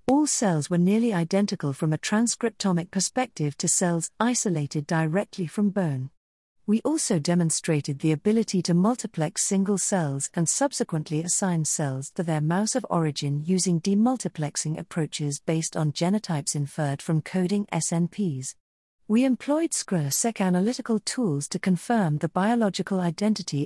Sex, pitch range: female, 155-205 Hz